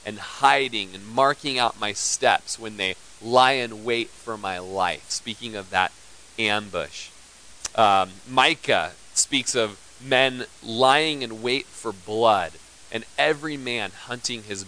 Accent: American